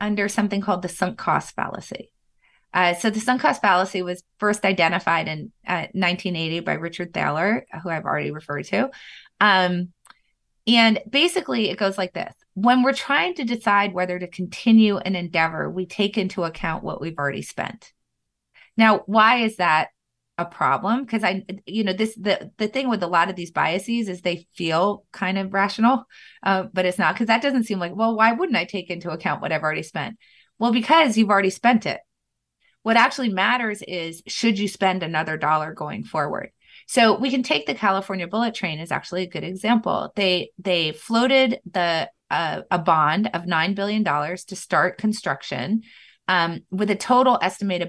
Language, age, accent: English, 20-39, American